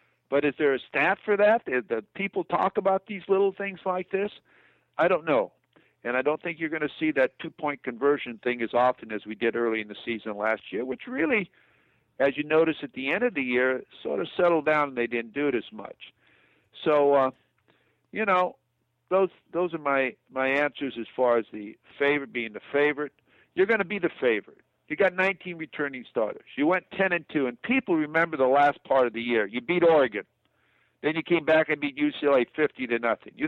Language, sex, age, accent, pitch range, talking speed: English, male, 60-79, American, 125-180 Hz, 215 wpm